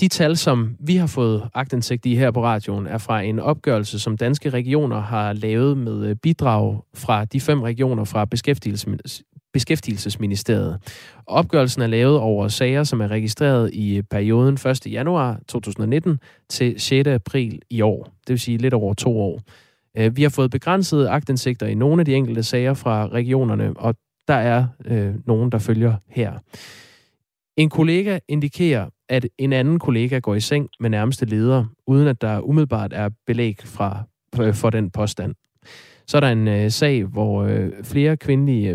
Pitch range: 110-135 Hz